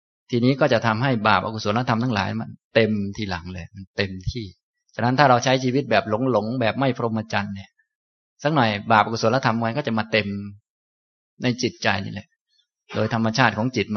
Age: 20-39